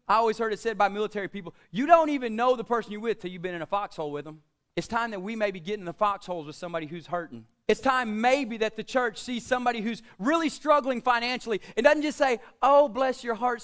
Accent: American